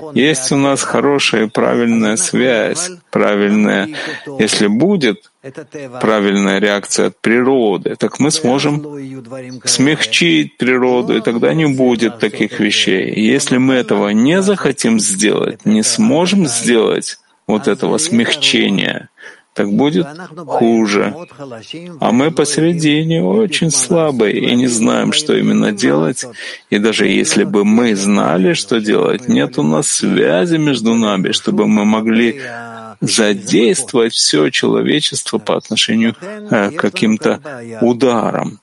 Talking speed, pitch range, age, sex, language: 120 wpm, 115-160 Hz, 40-59, male, Russian